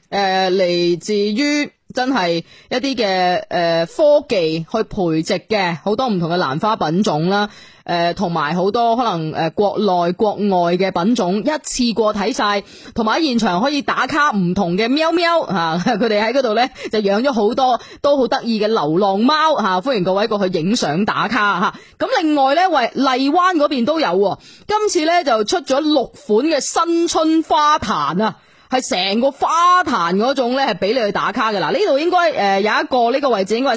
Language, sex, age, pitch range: Chinese, female, 20-39, 195-275 Hz